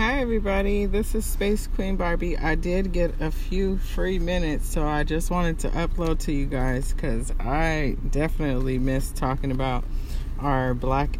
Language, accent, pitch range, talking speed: English, American, 135-170 Hz, 165 wpm